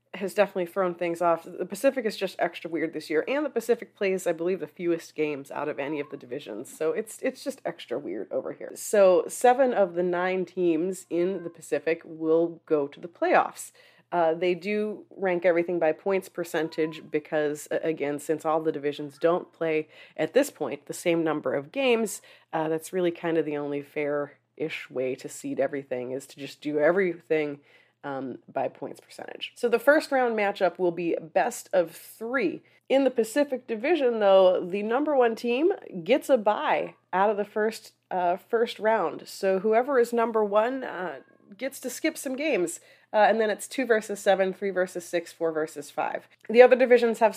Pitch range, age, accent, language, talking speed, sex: 160-225 Hz, 30-49, American, English, 195 wpm, female